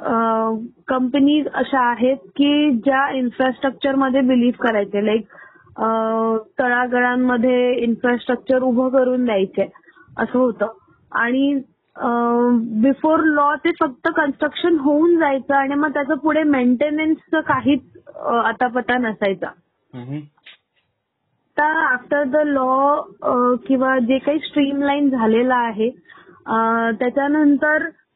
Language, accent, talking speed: Marathi, native, 95 wpm